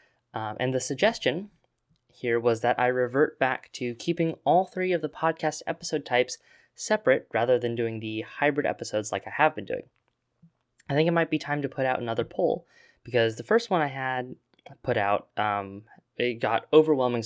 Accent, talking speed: American, 190 wpm